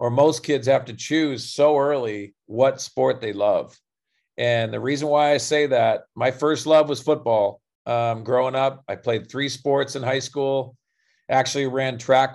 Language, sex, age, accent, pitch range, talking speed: English, male, 50-69, American, 120-140 Hz, 180 wpm